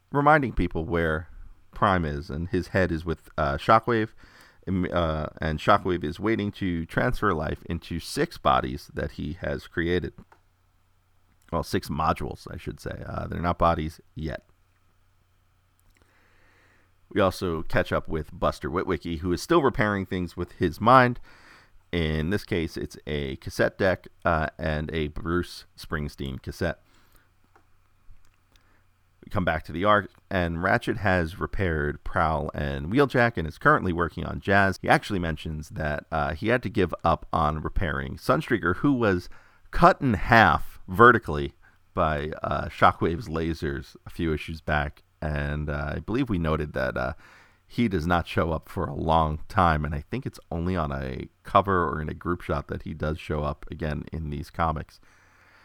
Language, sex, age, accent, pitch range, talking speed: English, male, 40-59, American, 80-95 Hz, 165 wpm